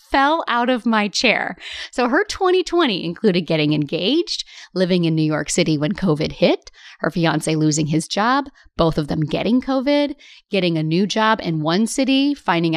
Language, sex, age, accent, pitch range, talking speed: English, female, 30-49, American, 175-250 Hz, 175 wpm